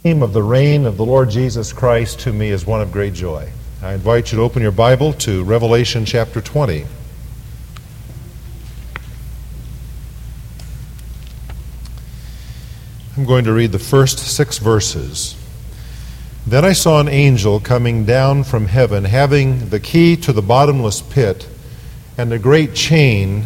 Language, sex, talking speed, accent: English, male, 140 wpm, American